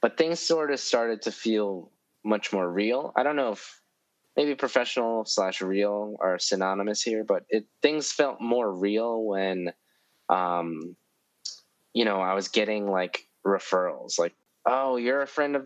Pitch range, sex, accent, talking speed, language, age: 95-125 Hz, male, American, 160 wpm, English, 20-39